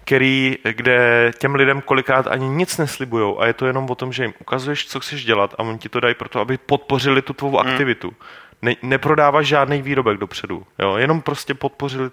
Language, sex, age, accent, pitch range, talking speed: Czech, male, 30-49, native, 115-135 Hz, 200 wpm